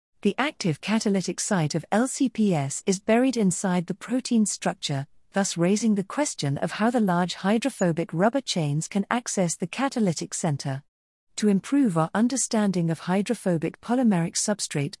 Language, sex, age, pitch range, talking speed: English, female, 40-59, 160-215 Hz, 145 wpm